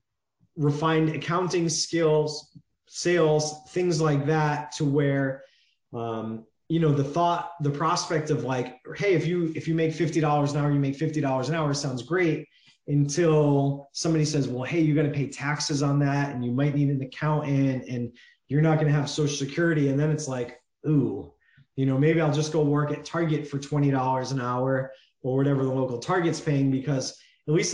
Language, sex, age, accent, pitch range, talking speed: English, male, 20-39, American, 135-155 Hz, 190 wpm